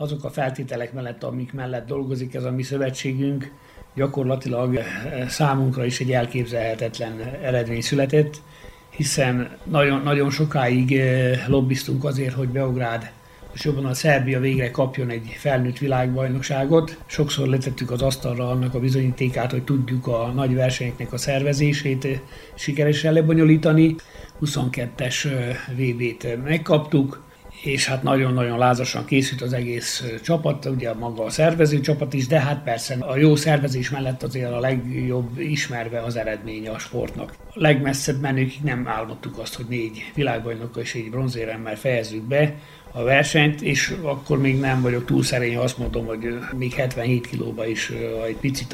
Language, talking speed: Hungarian, 145 wpm